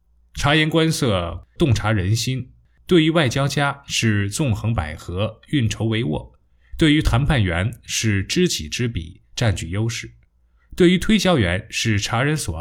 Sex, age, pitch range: male, 20-39, 90-125 Hz